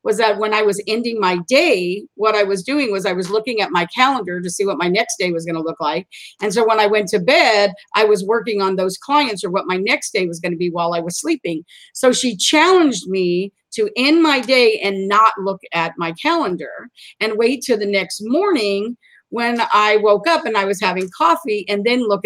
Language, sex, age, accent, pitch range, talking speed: English, female, 50-69, American, 195-265 Hz, 235 wpm